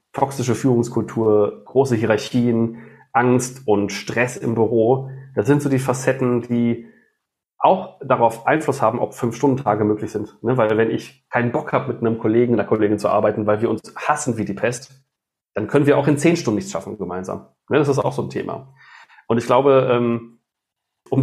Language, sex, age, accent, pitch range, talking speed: German, male, 40-59, German, 115-140 Hz, 185 wpm